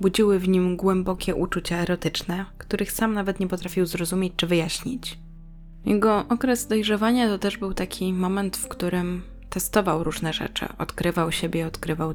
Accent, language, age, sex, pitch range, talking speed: native, Polish, 20-39, female, 165-200 Hz, 150 wpm